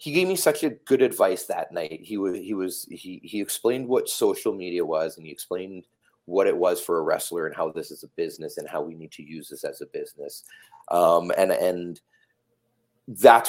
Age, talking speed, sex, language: 30-49, 220 wpm, male, English